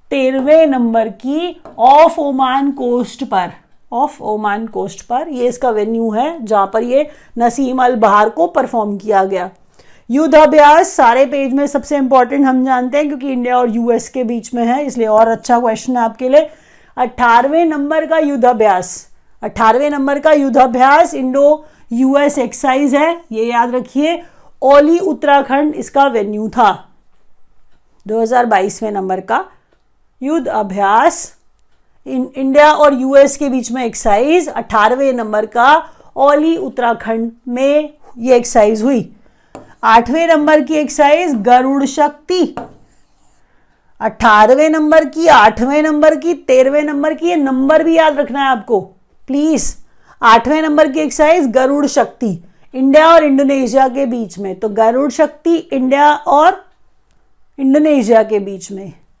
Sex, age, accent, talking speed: female, 50-69, Indian, 105 wpm